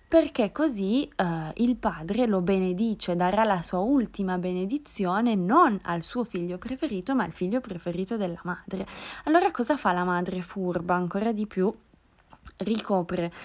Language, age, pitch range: Italian, 20-39, 180-230 Hz